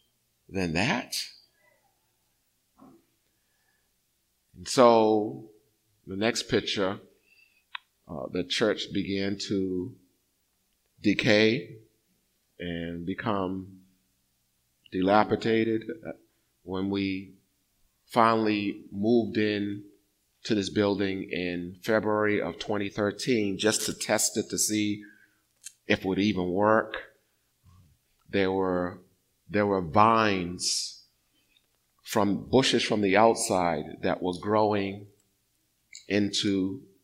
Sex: male